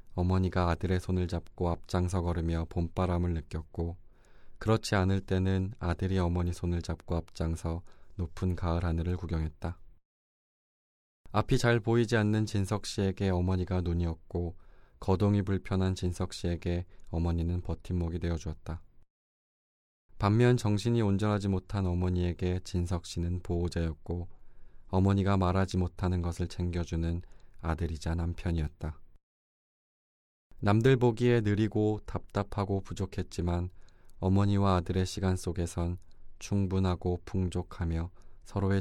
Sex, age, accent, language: male, 20-39, native, Korean